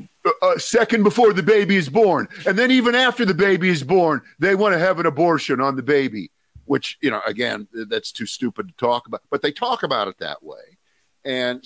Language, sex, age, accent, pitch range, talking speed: English, male, 50-69, American, 100-160 Hz, 215 wpm